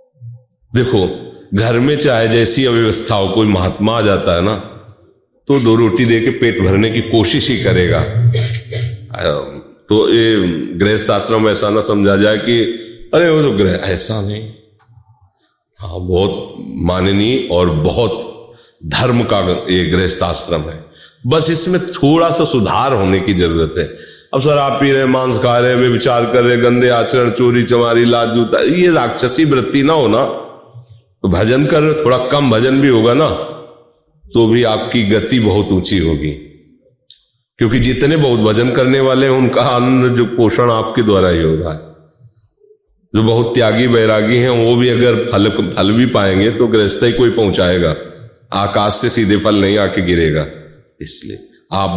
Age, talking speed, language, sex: 40-59, 155 wpm, Hindi, male